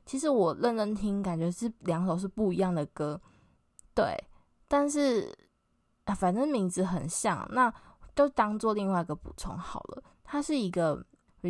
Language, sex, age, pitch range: Chinese, female, 10-29, 165-200 Hz